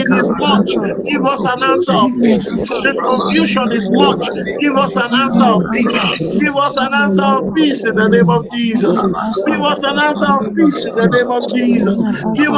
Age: 50-69